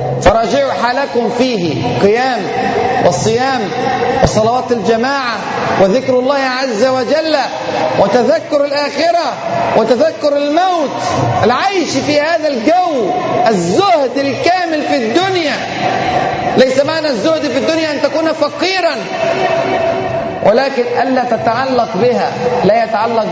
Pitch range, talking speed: 235-315 Hz, 95 wpm